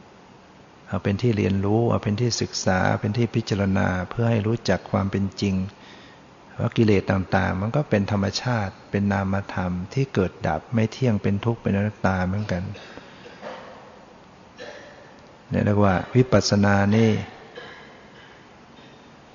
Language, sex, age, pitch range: Thai, male, 60-79, 100-115 Hz